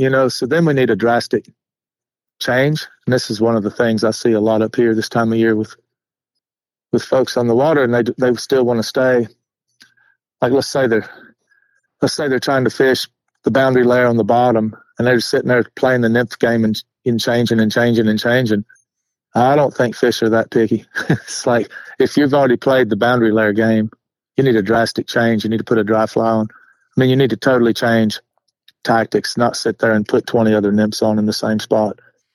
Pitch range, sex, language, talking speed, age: 110-125 Hz, male, English, 225 wpm, 50-69